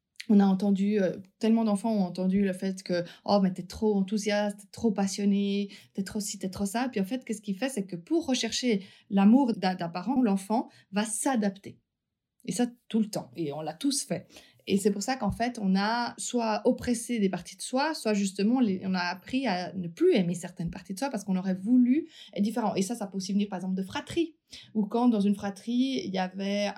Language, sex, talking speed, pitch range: French, female, 235 wpm, 195-235 Hz